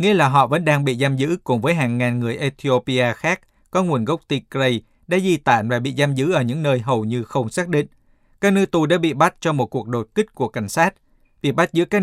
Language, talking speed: Vietnamese, 260 wpm